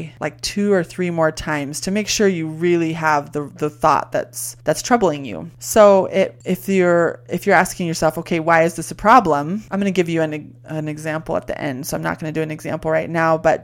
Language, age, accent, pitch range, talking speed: English, 20-39, American, 155-195 Hz, 240 wpm